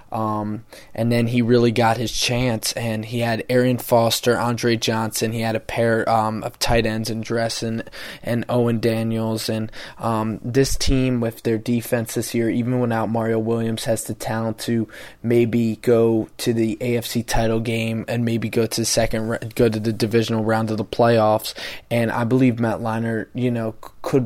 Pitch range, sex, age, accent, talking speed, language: 110-120 Hz, male, 20-39, American, 185 wpm, English